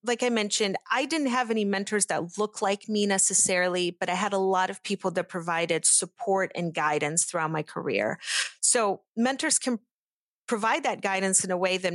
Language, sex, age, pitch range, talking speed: English, female, 30-49, 180-225 Hz, 190 wpm